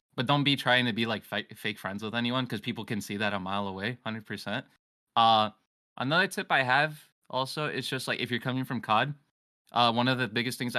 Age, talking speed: 20-39, 220 wpm